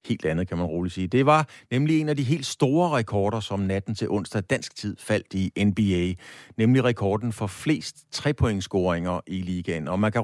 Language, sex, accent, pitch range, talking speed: Danish, male, native, 95-125 Hz, 200 wpm